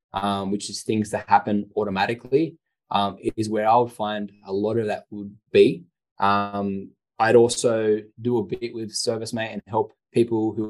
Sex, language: male, English